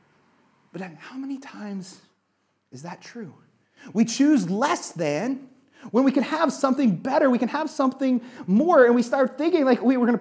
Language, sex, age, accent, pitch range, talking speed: English, male, 30-49, American, 175-260 Hz, 175 wpm